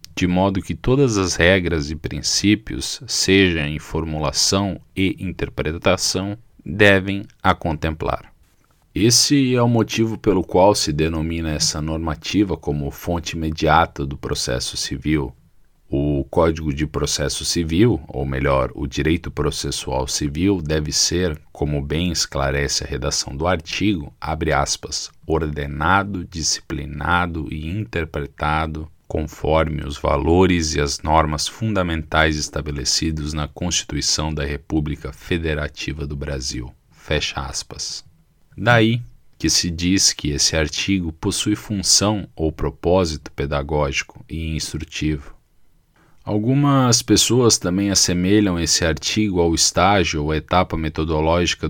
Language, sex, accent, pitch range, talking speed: Portuguese, male, Brazilian, 75-95 Hz, 115 wpm